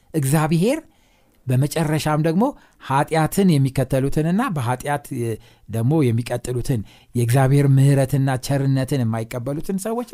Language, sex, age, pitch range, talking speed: Amharic, male, 60-79, 130-195 Hz, 75 wpm